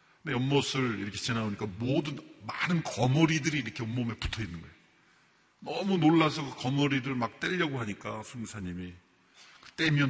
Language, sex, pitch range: Korean, male, 110-155 Hz